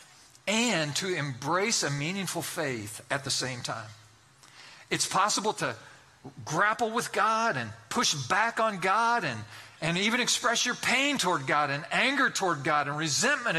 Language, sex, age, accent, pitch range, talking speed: English, male, 40-59, American, 145-210 Hz, 155 wpm